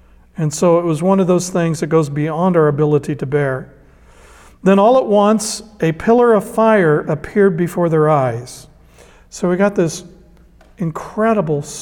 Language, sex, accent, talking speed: English, male, American, 160 wpm